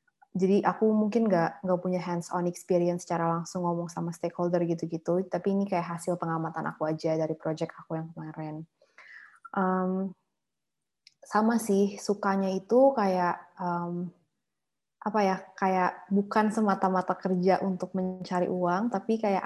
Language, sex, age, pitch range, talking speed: Indonesian, female, 20-39, 180-220 Hz, 135 wpm